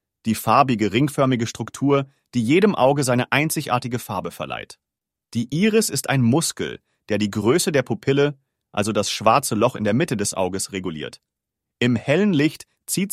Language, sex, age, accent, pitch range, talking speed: English, male, 40-59, German, 110-140 Hz, 160 wpm